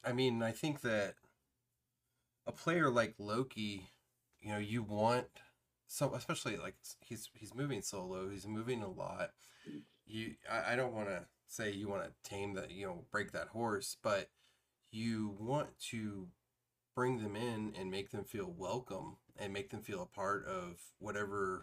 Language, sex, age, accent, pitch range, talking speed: English, male, 30-49, American, 95-120 Hz, 170 wpm